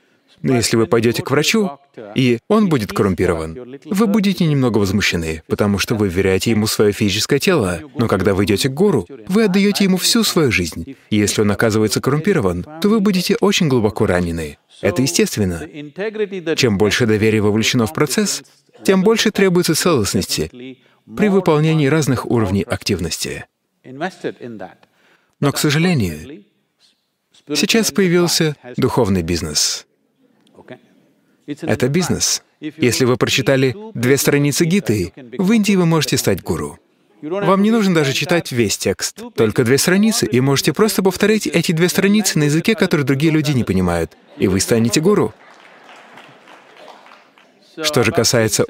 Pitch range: 110-180 Hz